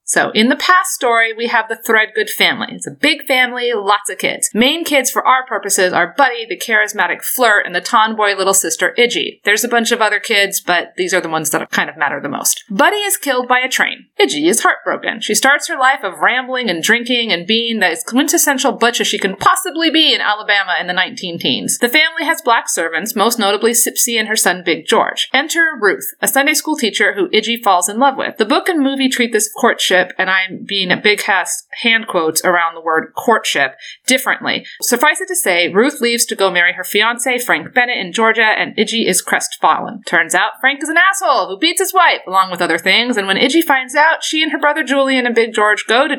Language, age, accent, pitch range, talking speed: English, 30-49, American, 200-280 Hz, 225 wpm